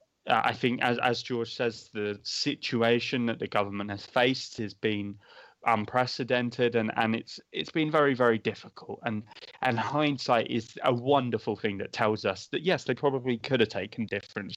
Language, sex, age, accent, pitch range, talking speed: English, male, 20-39, British, 110-130 Hz, 175 wpm